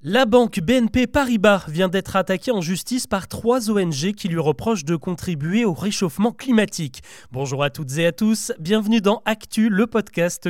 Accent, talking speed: French, 175 wpm